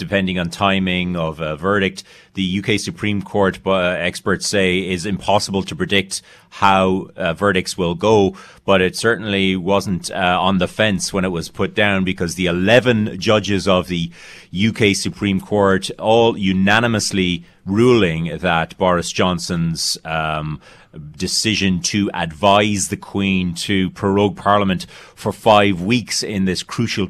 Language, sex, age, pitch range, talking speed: English, male, 30-49, 90-100 Hz, 145 wpm